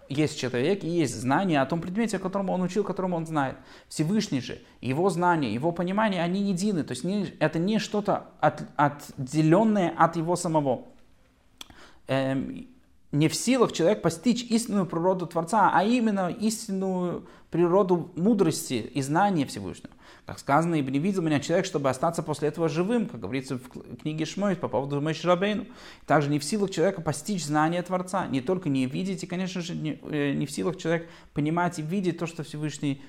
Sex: male